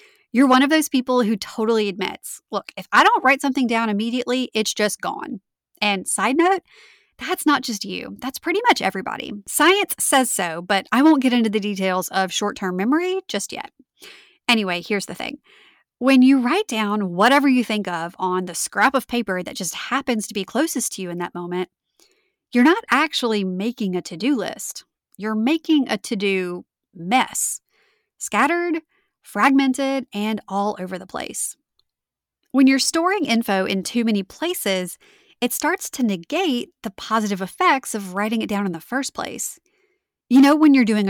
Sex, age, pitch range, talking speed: female, 30-49, 195-290 Hz, 175 wpm